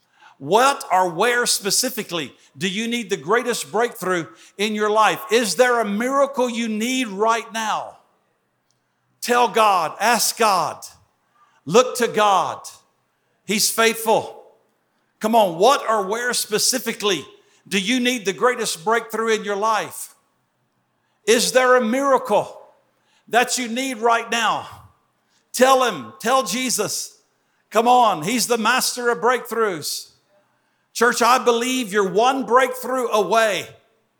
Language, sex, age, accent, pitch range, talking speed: English, male, 50-69, American, 205-250 Hz, 125 wpm